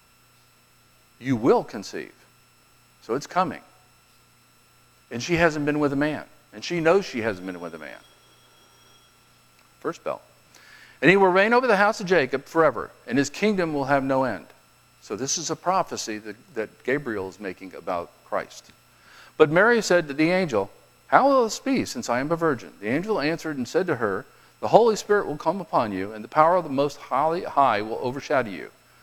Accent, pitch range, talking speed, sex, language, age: American, 120-175 Hz, 190 wpm, male, English, 50-69